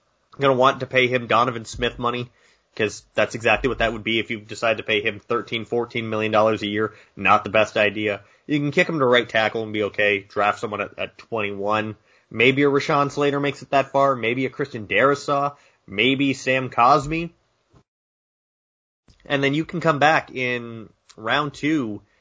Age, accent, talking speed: 20-39, American, 190 wpm